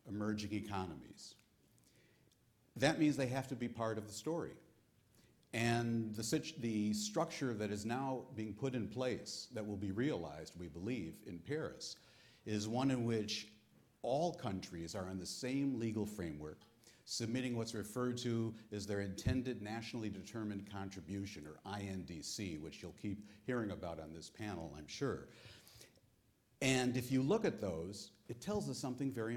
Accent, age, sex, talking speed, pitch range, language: American, 50-69, male, 155 wpm, 100-125 Hz, English